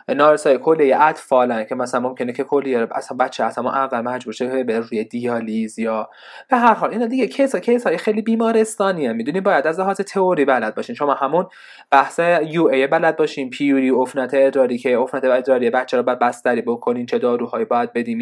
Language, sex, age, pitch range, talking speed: Persian, male, 20-39, 130-190 Hz, 195 wpm